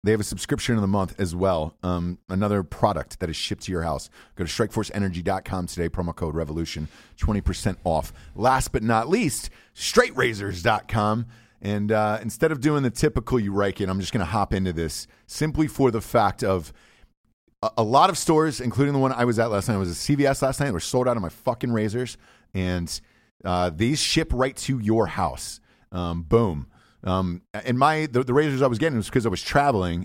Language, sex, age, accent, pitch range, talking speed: English, male, 30-49, American, 95-130 Hz, 210 wpm